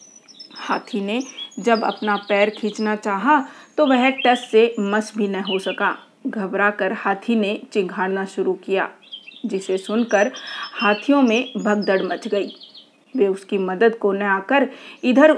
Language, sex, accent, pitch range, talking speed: Hindi, female, native, 200-255 Hz, 135 wpm